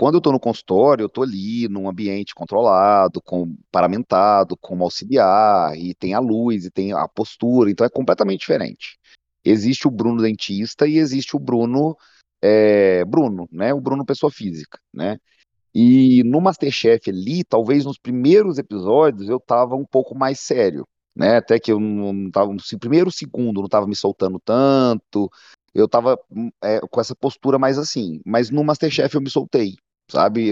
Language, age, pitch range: Portuguese, 30-49, 100-140 Hz